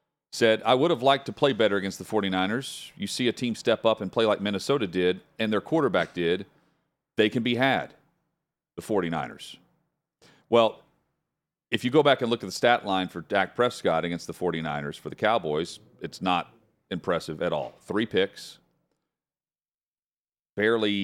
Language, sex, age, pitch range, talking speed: English, male, 40-59, 90-110 Hz, 170 wpm